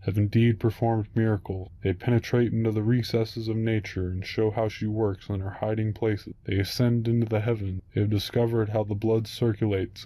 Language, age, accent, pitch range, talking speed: English, 20-39, American, 100-115 Hz, 190 wpm